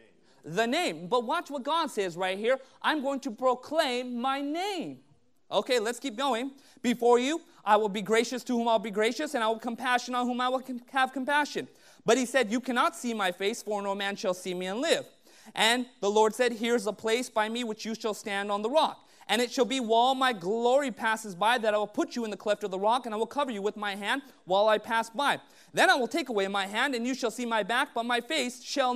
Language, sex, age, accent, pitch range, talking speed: English, male, 30-49, American, 225-280 Hz, 255 wpm